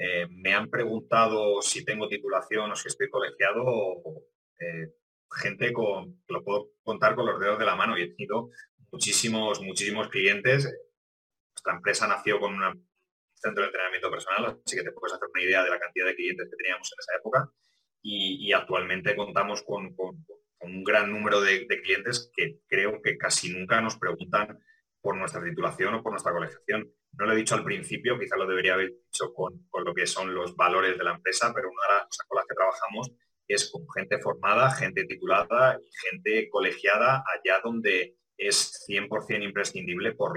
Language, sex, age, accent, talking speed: Spanish, male, 30-49, Spanish, 190 wpm